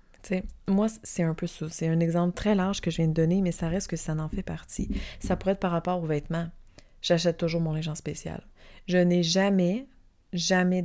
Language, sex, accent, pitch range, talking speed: French, female, Canadian, 160-190 Hz, 220 wpm